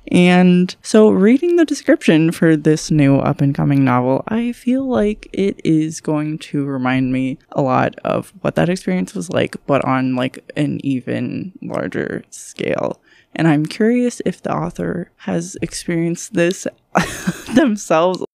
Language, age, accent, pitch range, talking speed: English, 20-39, American, 150-190 Hz, 145 wpm